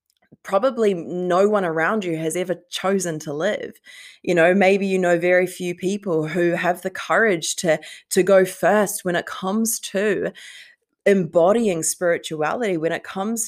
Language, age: English, 20-39